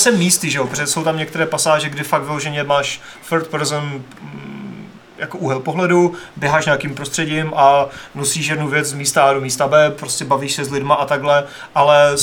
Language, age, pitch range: Czech, 30-49, 135-150 Hz